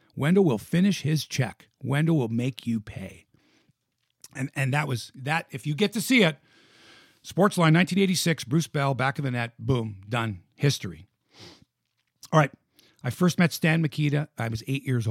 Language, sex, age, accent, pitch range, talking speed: English, male, 50-69, American, 120-160 Hz, 170 wpm